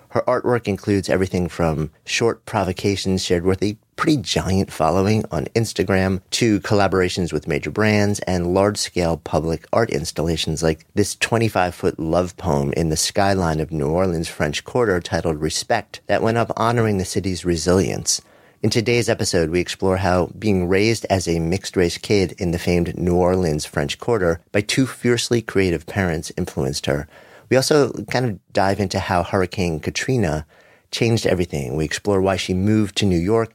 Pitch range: 85-105 Hz